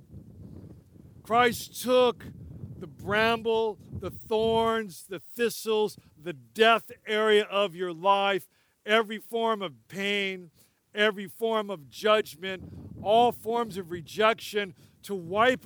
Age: 50-69